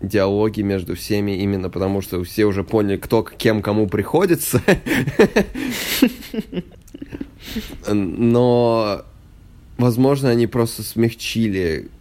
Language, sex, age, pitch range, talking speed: Russian, male, 20-39, 85-115 Hz, 90 wpm